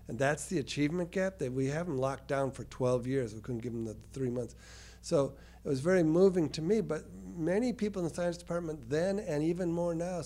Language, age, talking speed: English, 50-69, 230 wpm